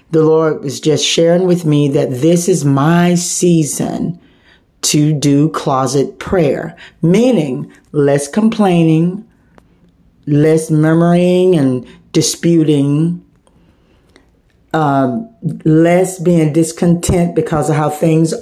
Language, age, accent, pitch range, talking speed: English, 50-69, American, 150-180 Hz, 100 wpm